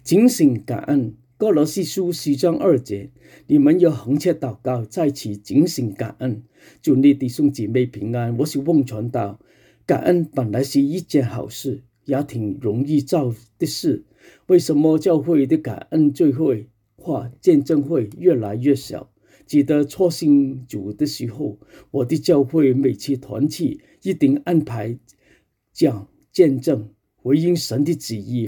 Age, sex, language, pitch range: 50-69, male, English, 120-155 Hz